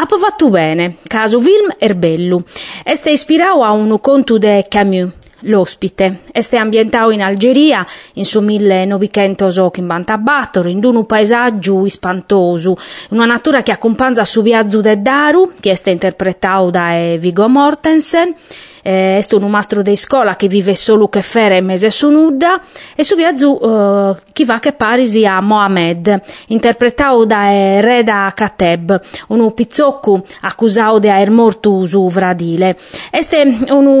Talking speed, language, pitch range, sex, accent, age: 145 wpm, Italian, 195-255 Hz, female, native, 30-49